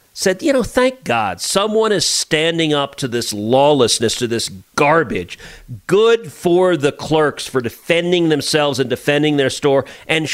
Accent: American